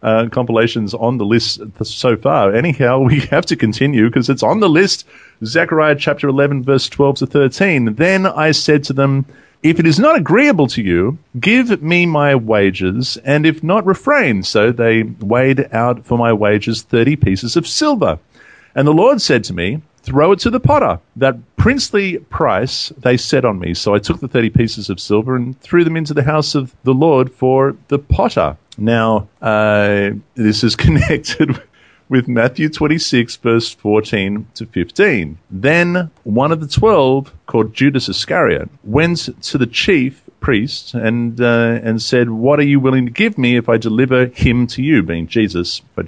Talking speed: 180 wpm